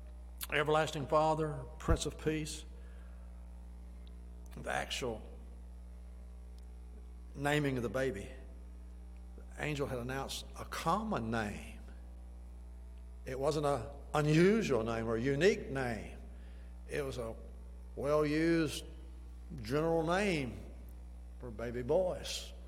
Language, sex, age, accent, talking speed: English, male, 60-79, American, 95 wpm